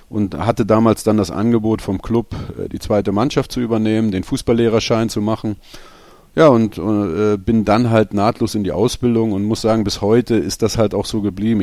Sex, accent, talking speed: male, German, 195 wpm